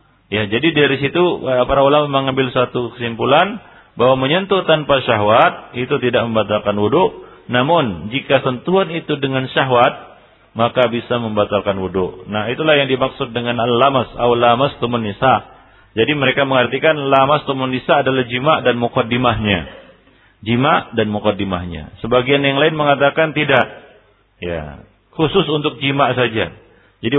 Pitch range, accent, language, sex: 105-140 Hz, native, Indonesian, male